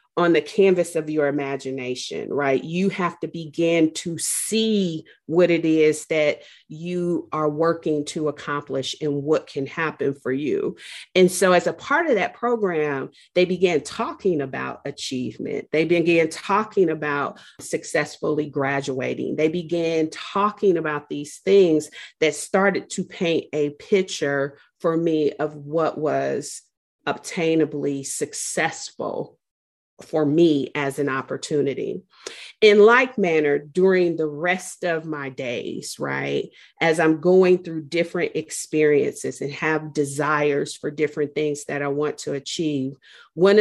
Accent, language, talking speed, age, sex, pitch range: American, English, 135 wpm, 40-59, female, 145-180 Hz